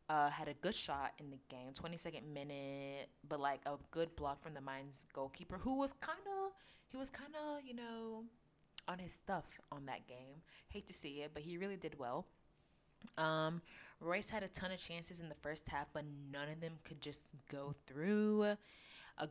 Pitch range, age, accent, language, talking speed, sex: 150-200 Hz, 20-39, American, English, 200 wpm, female